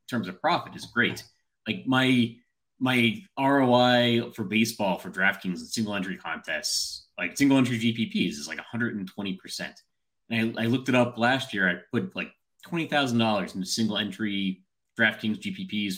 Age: 30-49